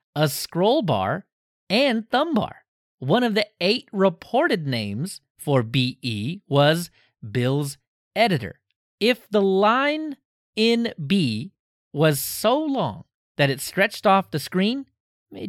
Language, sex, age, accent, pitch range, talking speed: English, male, 30-49, American, 135-205 Hz, 125 wpm